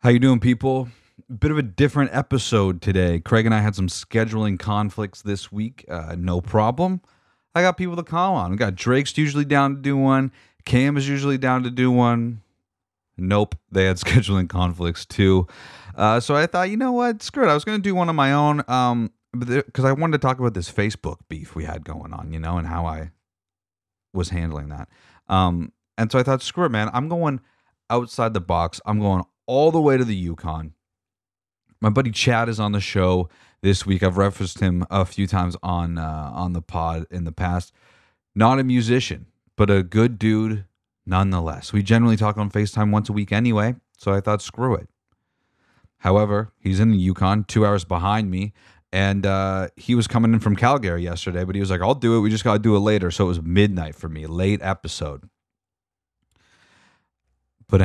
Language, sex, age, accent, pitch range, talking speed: English, male, 30-49, American, 90-120 Hz, 205 wpm